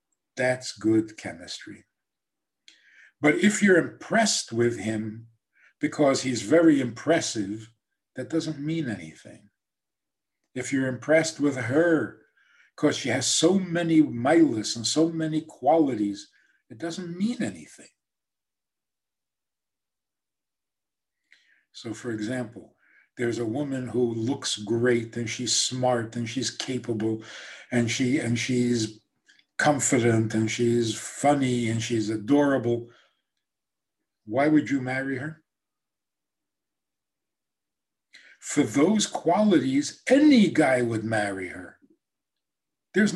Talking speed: 105 wpm